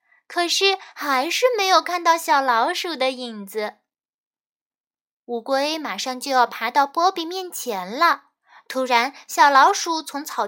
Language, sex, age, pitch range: Chinese, female, 10-29, 230-335 Hz